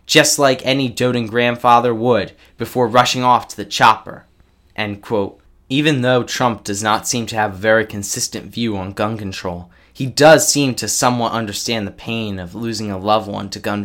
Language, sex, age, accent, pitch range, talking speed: English, male, 20-39, American, 105-135 Hz, 190 wpm